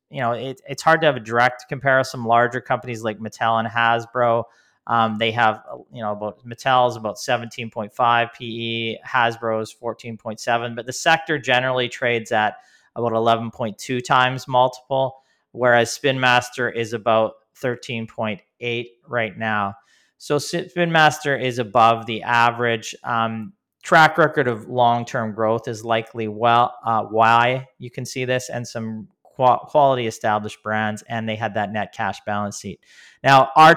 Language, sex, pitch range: English, male, 115-130 Hz